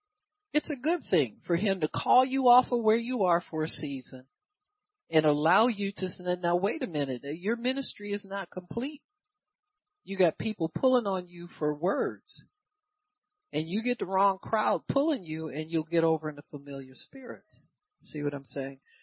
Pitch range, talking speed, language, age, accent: 170-270 Hz, 185 wpm, English, 50-69, American